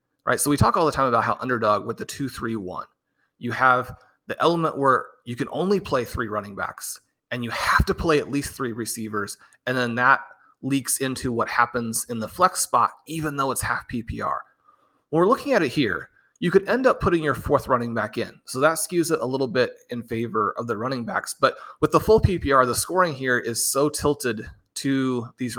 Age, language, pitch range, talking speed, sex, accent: 30-49, English, 120-145 Hz, 215 wpm, male, American